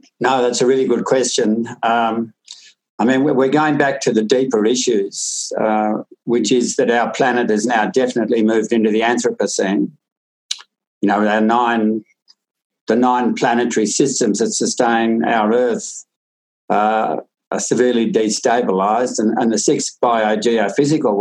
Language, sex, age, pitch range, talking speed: English, male, 60-79, 110-130 Hz, 140 wpm